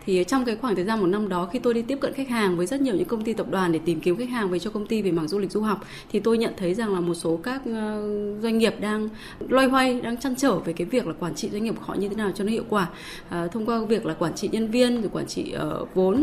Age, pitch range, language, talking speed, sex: 20-39, 175-225 Hz, Vietnamese, 315 wpm, female